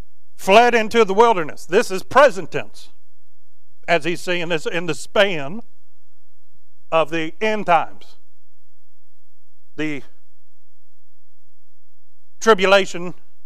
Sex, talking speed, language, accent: male, 95 wpm, English, American